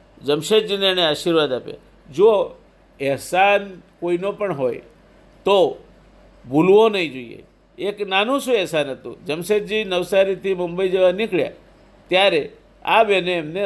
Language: Gujarati